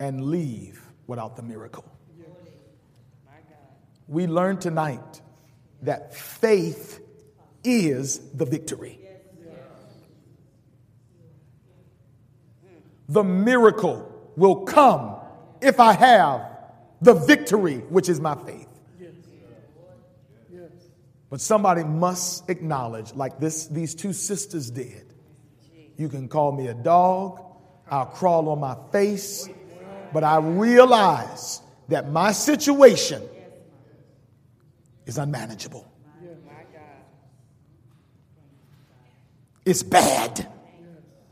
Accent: American